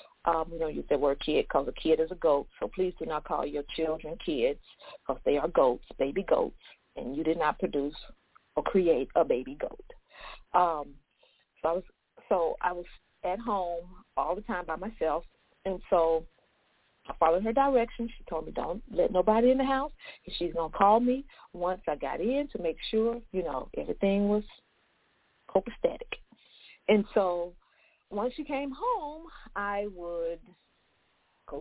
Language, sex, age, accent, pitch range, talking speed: English, female, 40-59, American, 165-225 Hz, 175 wpm